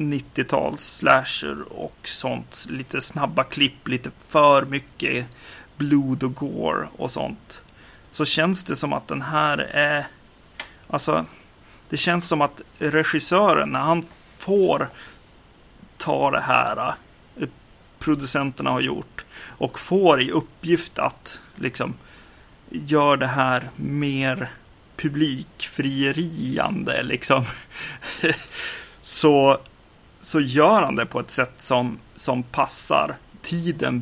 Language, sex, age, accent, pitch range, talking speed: Swedish, male, 30-49, native, 130-155 Hz, 110 wpm